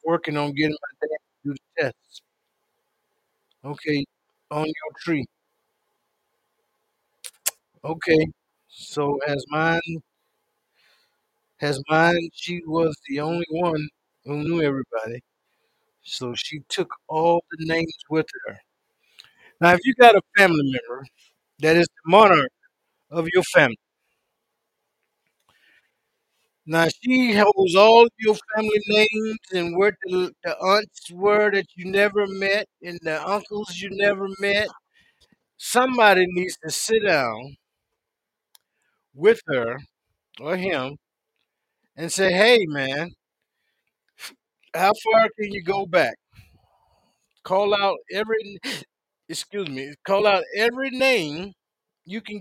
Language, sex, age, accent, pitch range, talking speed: English, male, 50-69, American, 155-210 Hz, 115 wpm